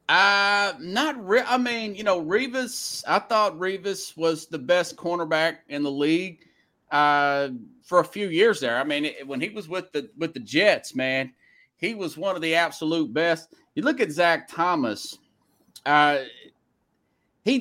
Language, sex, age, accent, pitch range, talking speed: English, male, 30-49, American, 155-220 Hz, 170 wpm